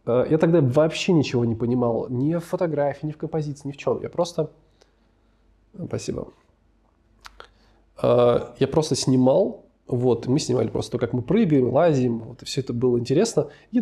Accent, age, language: native, 20-39, Russian